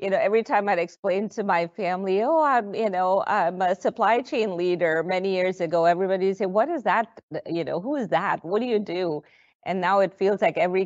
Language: English